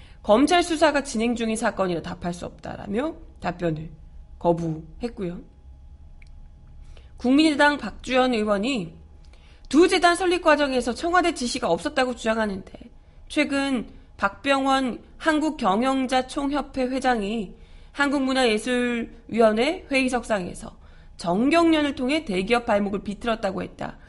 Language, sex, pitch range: Korean, female, 195-280 Hz